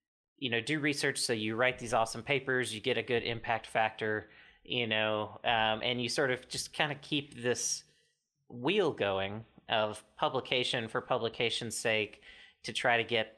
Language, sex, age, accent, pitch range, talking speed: English, male, 30-49, American, 110-130 Hz, 175 wpm